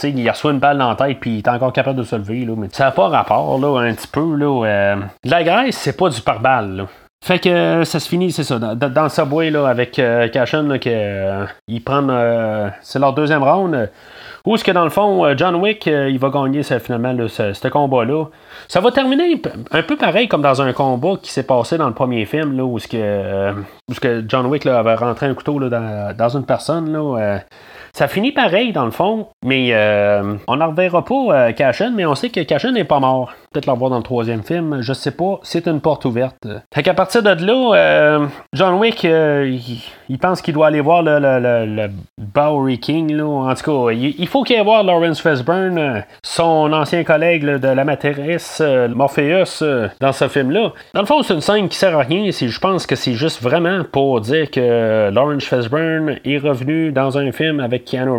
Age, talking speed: 30-49, 220 wpm